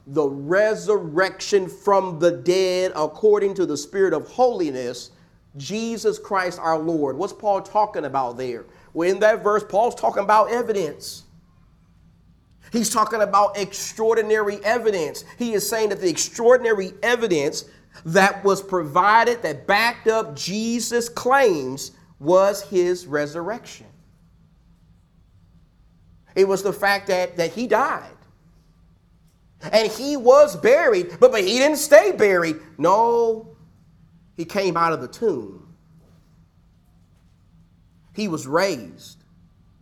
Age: 40-59